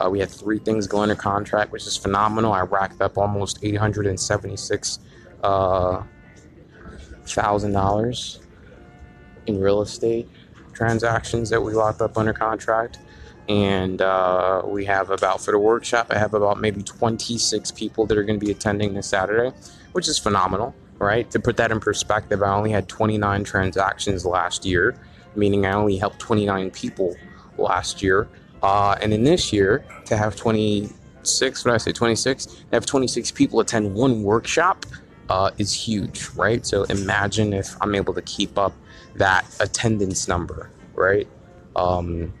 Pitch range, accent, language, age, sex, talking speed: 95-110 Hz, American, English, 20-39, male, 155 wpm